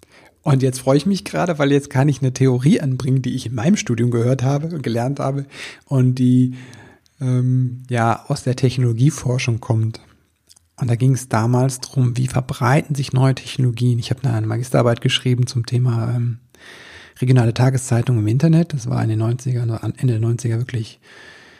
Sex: male